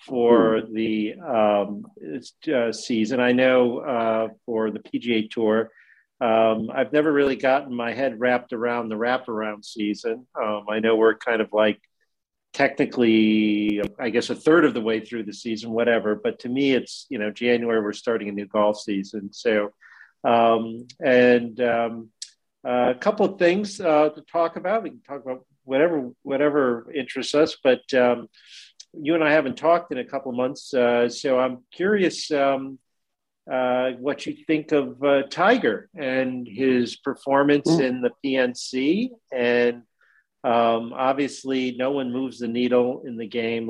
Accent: American